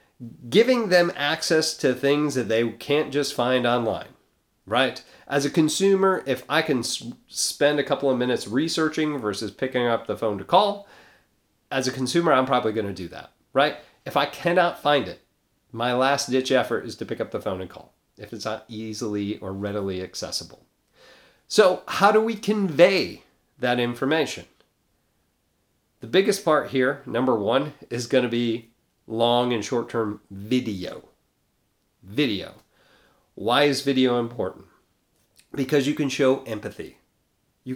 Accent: American